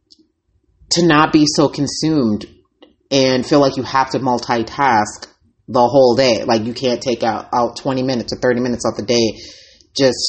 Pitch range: 120-165 Hz